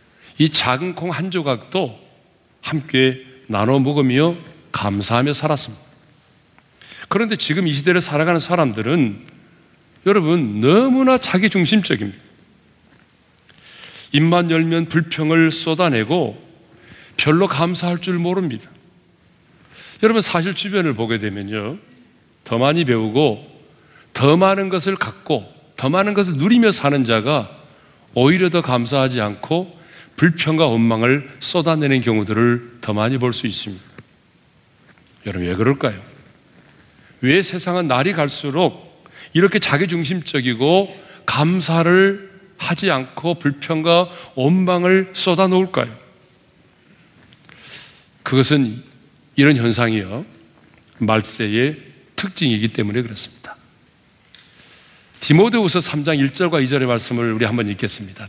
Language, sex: Korean, male